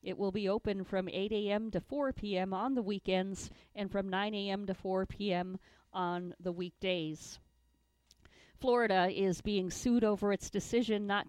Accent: American